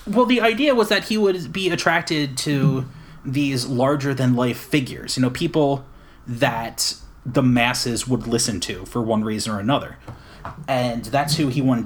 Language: English